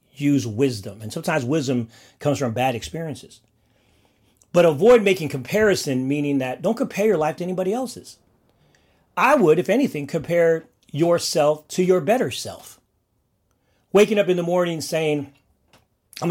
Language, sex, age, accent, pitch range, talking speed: English, male, 40-59, American, 120-170 Hz, 145 wpm